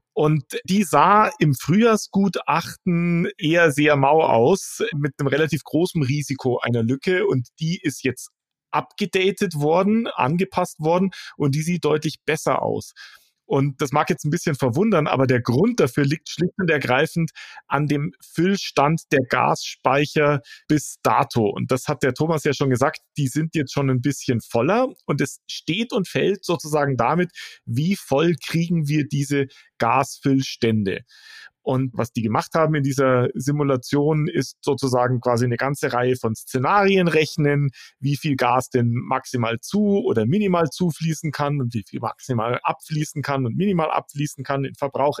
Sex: male